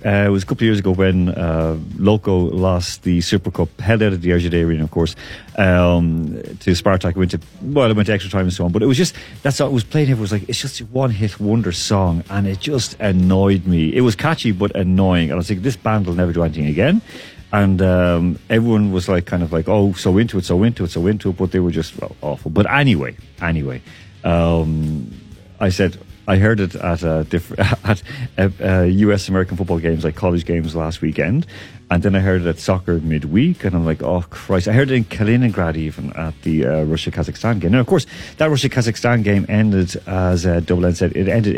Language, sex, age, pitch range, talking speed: English, male, 40-59, 85-110 Hz, 225 wpm